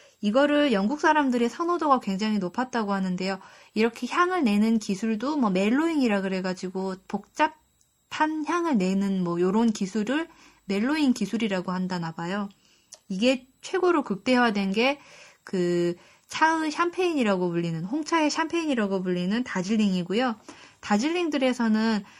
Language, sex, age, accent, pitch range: Korean, female, 20-39, native, 195-285 Hz